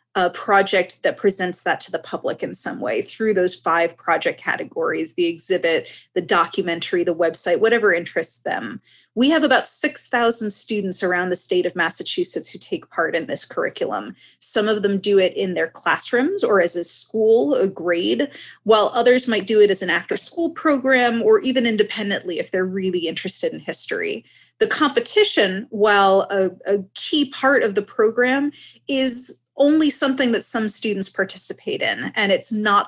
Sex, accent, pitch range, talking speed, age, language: female, American, 190-265 Hz, 175 wpm, 20-39, English